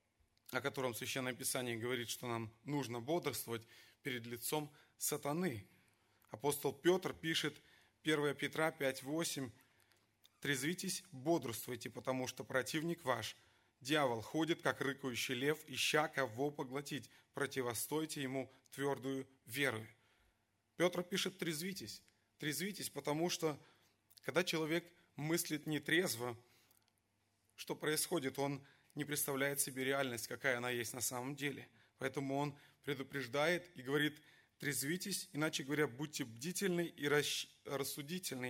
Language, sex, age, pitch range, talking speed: Russian, male, 30-49, 125-155 Hz, 110 wpm